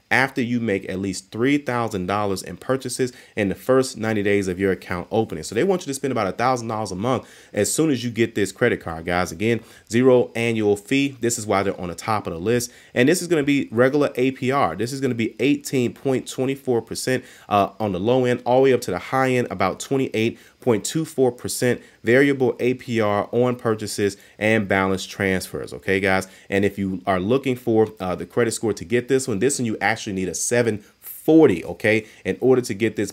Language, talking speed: English, 210 wpm